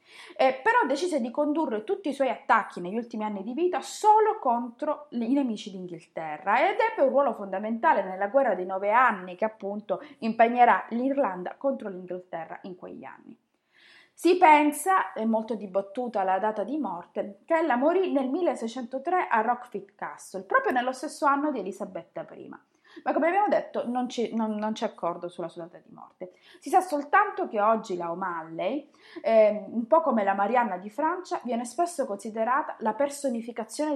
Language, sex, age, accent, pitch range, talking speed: Italian, female, 20-39, native, 200-290 Hz, 165 wpm